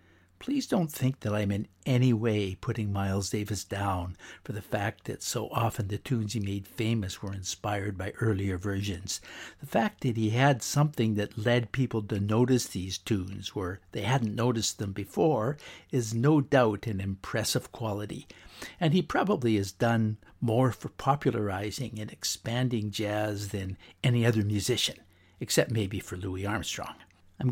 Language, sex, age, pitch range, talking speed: English, male, 60-79, 100-120 Hz, 160 wpm